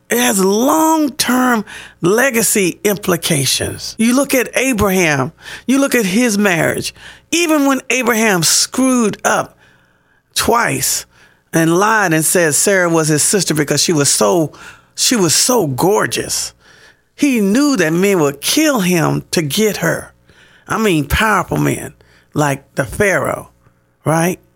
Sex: male